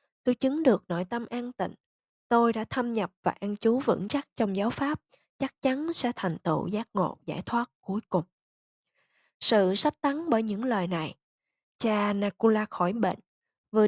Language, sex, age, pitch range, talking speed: Vietnamese, female, 20-39, 185-250 Hz, 180 wpm